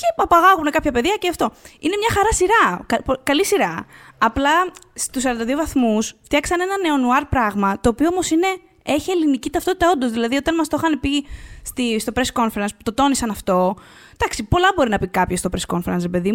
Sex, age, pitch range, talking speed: female, 20-39, 240-330 Hz, 190 wpm